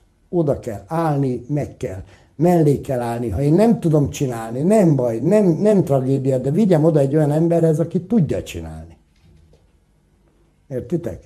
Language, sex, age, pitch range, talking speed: Hungarian, male, 60-79, 90-140 Hz, 150 wpm